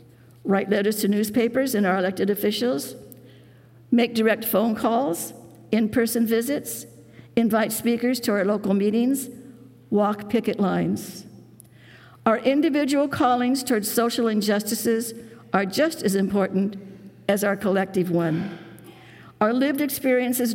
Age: 60-79